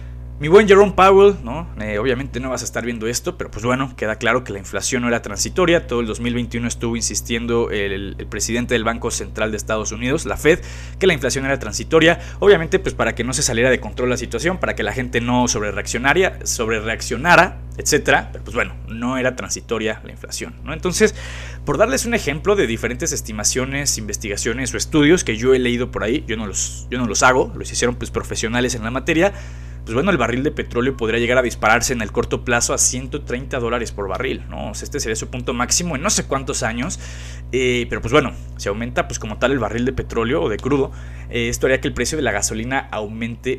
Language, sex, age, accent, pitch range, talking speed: Spanish, male, 20-39, Mexican, 110-135 Hz, 225 wpm